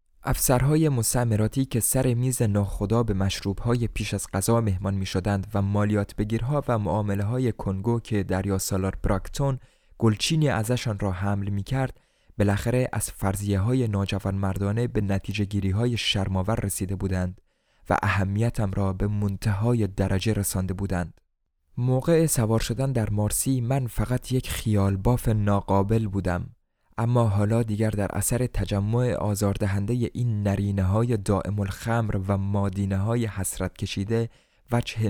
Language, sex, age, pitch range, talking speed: Persian, male, 20-39, 100-120 Hz, 130 wpm